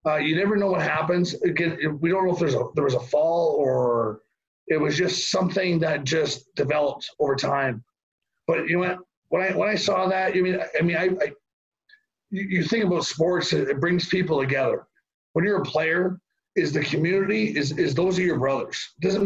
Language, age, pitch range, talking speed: English, 40-59, 150-185 Hz, 205 wpm